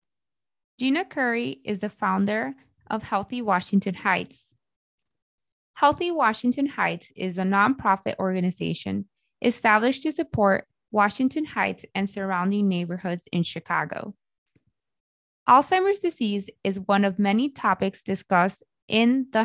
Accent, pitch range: American, 190-250 Hz